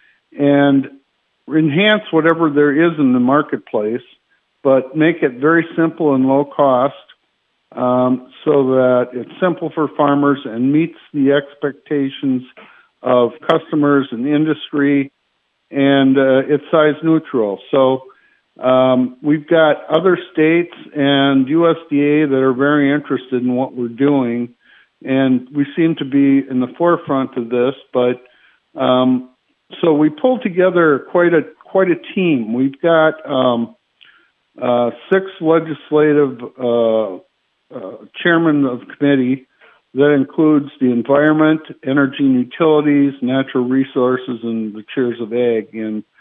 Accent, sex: American, male